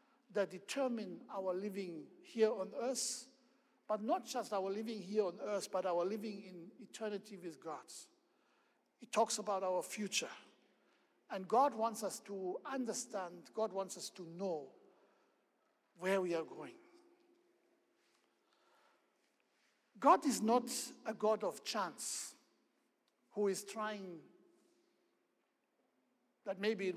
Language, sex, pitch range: English, male, 195-260 Hz